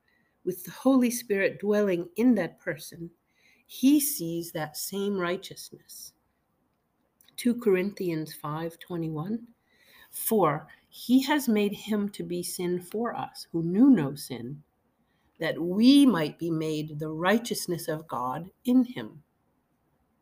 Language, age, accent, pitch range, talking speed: English, 50-69, American, 165-220 Hz, 125 wpm